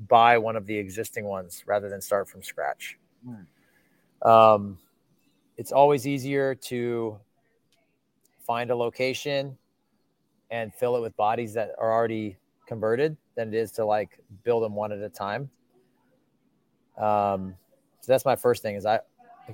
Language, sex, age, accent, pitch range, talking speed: English, male, 30-49, American, 105-125 Hz, 145 wpm